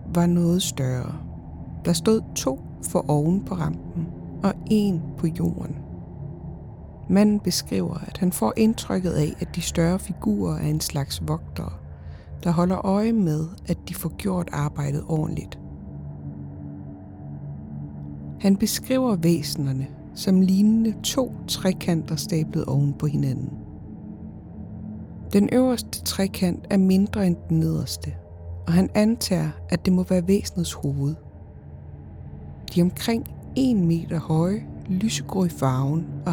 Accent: native